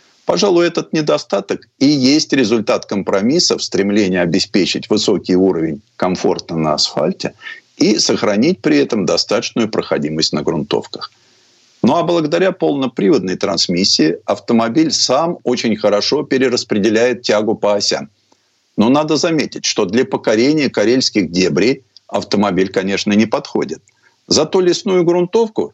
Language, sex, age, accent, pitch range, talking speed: Russian, male, 50-69, native, 110-170 Hz, 120 wpm